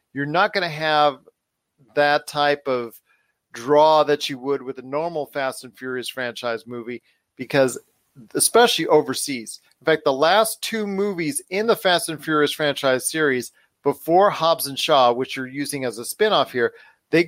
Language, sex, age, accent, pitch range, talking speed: English, male, 50-69, American, 145-190 Hz, 165 wpm